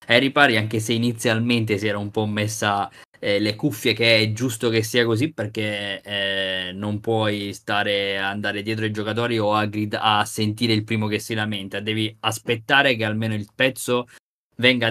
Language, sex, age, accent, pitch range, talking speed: Italian, male, 20-39, native, 105-120 Hz, 180 wpm